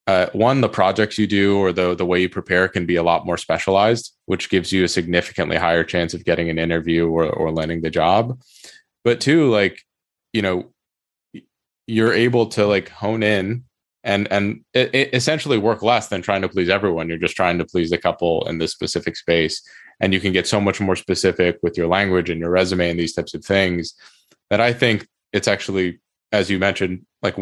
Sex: male